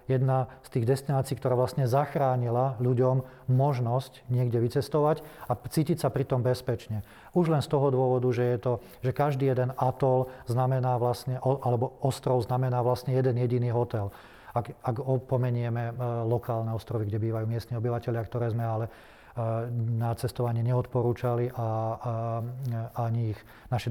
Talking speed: 140 wpm